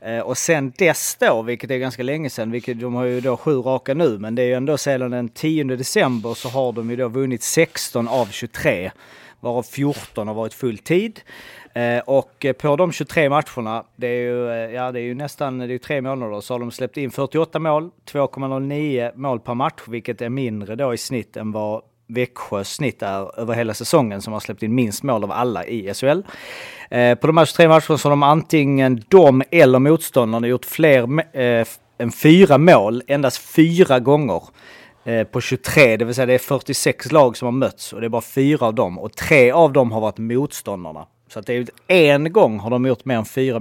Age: 30-49